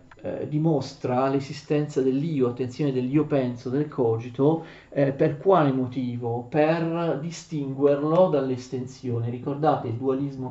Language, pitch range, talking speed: Italian, 125-145 Hz, 110 wpm